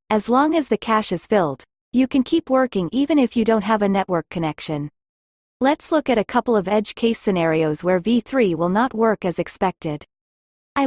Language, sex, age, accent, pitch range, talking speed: English, female, 30-49, American, 175-245 Hz, 200 wpm